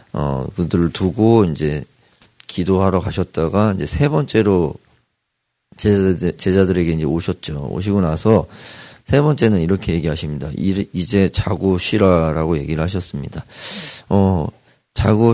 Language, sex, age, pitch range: Korean, male, 40-59, 85-105 Hz